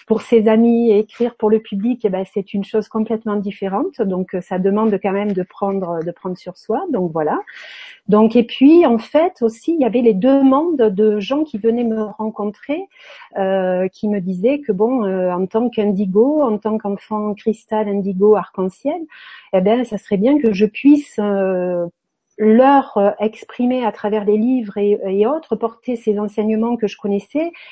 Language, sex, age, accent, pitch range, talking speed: French, female, 40-59, French, 205-250 Hz, 185 wpm